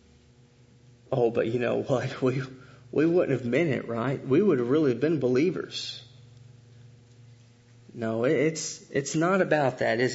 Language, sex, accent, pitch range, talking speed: English, male, American, 130-215 Hz, 150 wpm